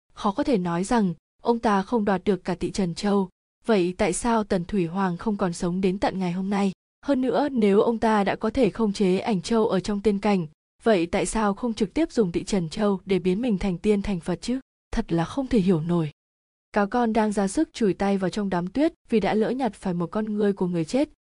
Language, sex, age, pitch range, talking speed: Vietnamese, female, 20-39, 185-225 Hz, 255 wpm